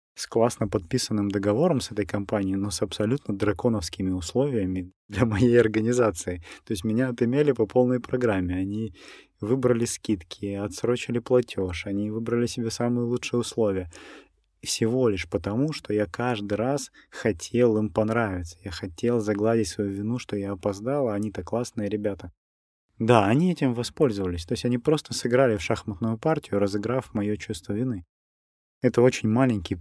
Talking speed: 150 wpm